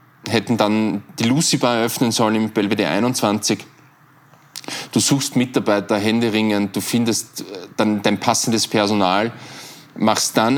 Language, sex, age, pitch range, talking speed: German, male, 20-39, 100-120 Hz, 120 wpm